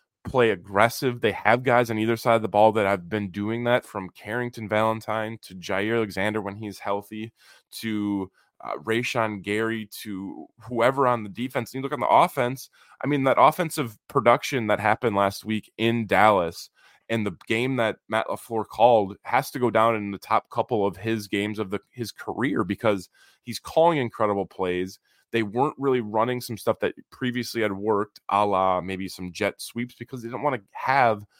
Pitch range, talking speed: 100-125 Hz, 190 wpm